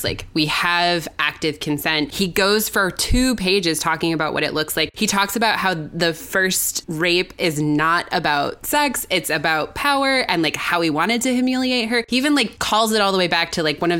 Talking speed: 220 wpm